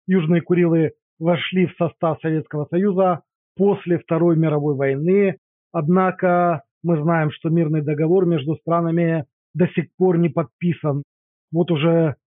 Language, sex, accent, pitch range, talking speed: Russian, male, native, 160-185 Hz, 125 wpm